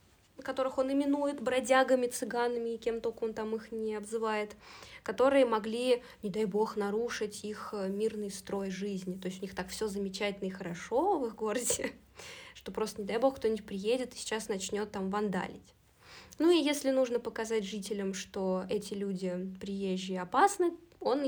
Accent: native